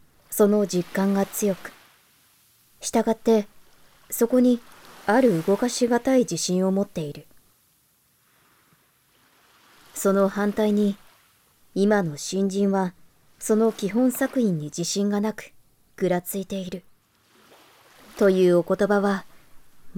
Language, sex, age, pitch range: Japanese, male, 20-39, 175-215 Hz